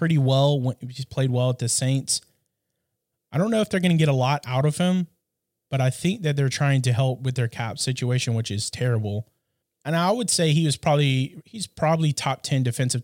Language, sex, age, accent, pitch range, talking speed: English, male, 20-39, American, 120-150 Hz, 225 wpm